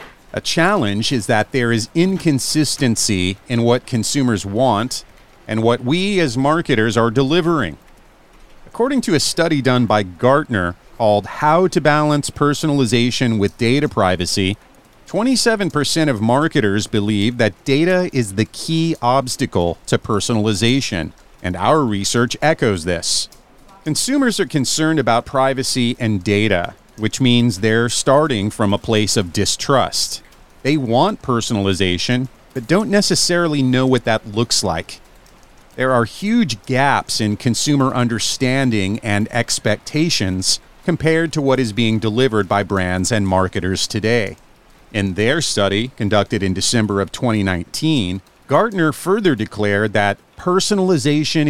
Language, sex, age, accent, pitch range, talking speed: English, male, 40-59, American, 105-145 Hz, 130 wpm